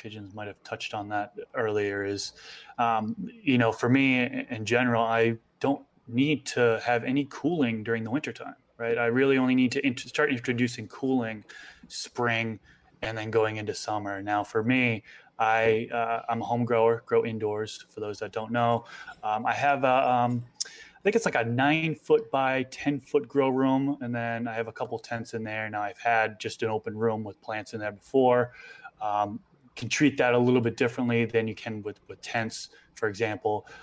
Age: 20-39